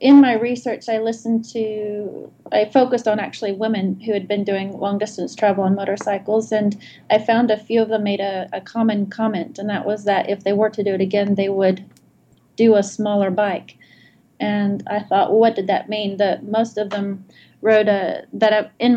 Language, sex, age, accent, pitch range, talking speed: English, female, 30-49, American, 195-220 Hz, 210 wpm